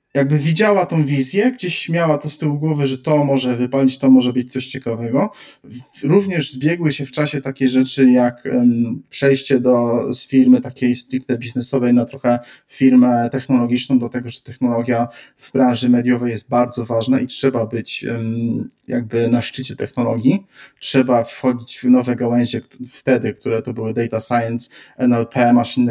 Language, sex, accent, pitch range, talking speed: Polish, male, native, 120-135 Hz, 160 wpm